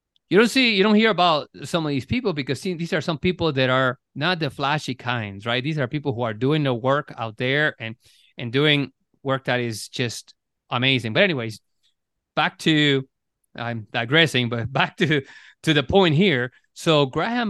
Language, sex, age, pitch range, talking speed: English, male, 30-49, 125-165 Hz, 190 wpm